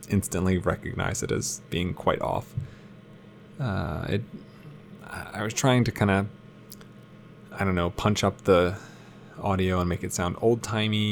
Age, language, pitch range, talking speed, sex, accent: 20-39, English, 95-110 Hz, 145 wpm, male, American